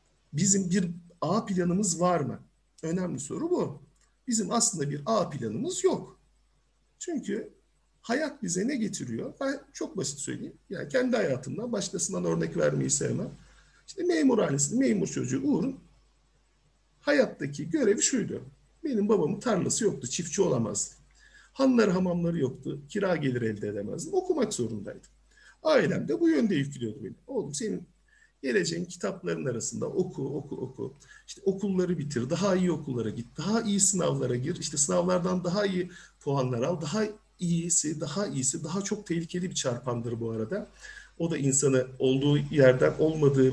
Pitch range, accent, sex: 135-205 Hz, native, male